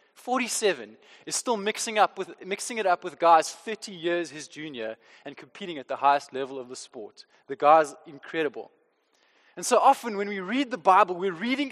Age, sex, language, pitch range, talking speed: 20-39, male, English, 180-255 Hz, 190 wpm